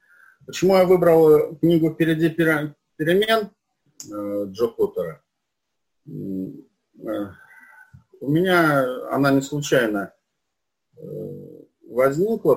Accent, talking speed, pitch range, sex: native, 65 wpm, 115-180 Hz, male